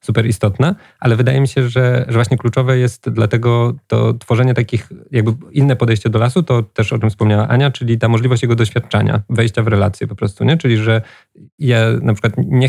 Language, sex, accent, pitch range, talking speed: Polish, male, native, 105-125 Hz, 205 wpm